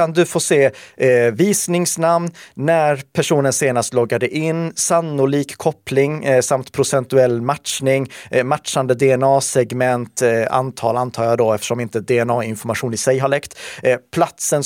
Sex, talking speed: male, 135 wpm